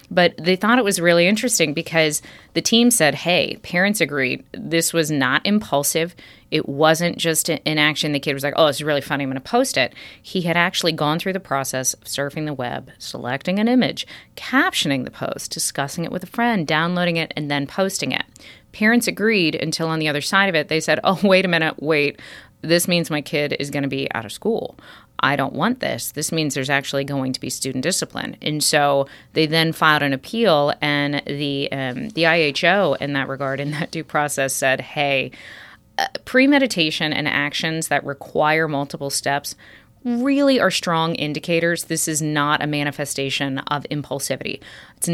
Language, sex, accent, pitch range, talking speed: English, female, American, 140-170 Hz, 195 wpm